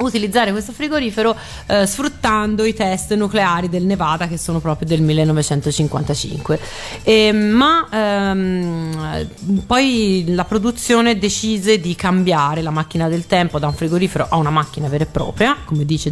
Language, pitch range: Italian, 160-210 Hz